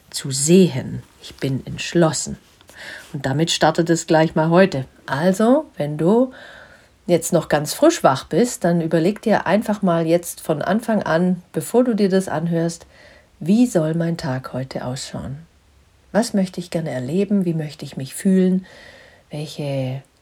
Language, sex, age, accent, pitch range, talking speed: German, female, 50-69, German, 135-190 Hz, 155 wpm